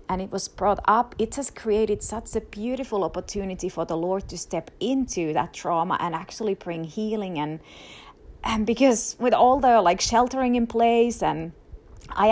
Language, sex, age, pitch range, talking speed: English, female, 30-49, 185-235 Hz, 175 wpm